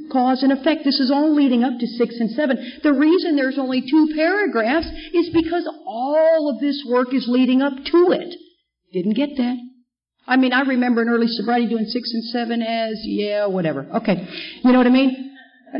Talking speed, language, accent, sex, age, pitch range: 200 wpm, English, American, female, 50-69, 225-310 Hz